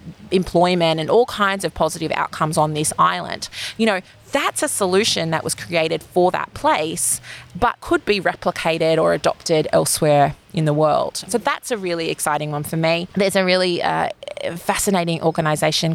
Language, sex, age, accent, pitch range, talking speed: English, female, 20-39, Australian, 160-200 Hz, 170 wpm